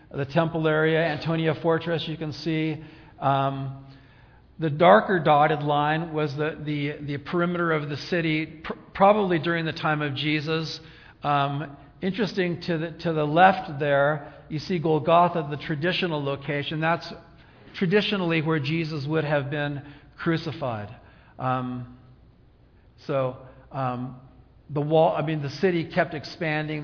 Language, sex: English, male